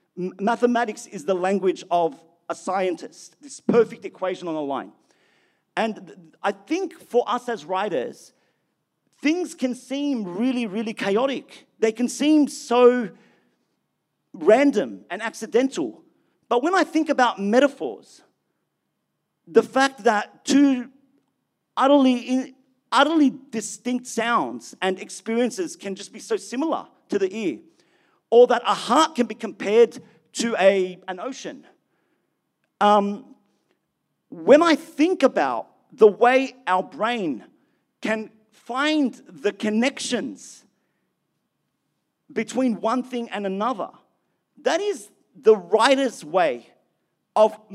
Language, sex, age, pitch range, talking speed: English, male, 40-59, 205-270 Hz, 115 wpm